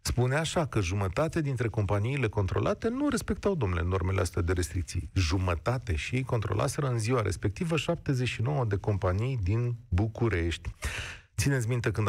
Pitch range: 100-130 Hz